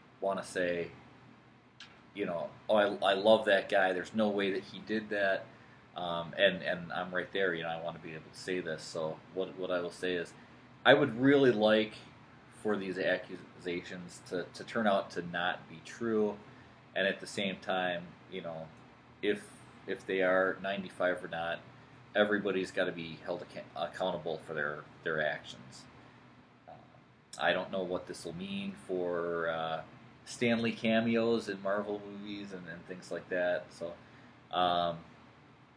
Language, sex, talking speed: English, male, 175 wpm